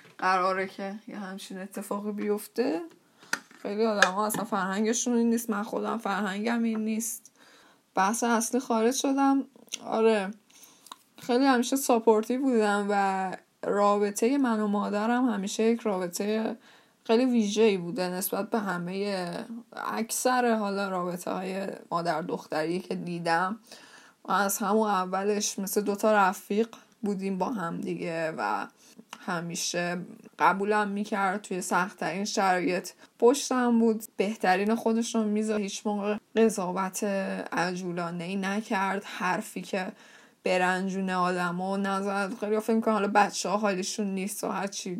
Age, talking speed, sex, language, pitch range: 10-29, 120 wpm, female, Persian, 190-230 Hz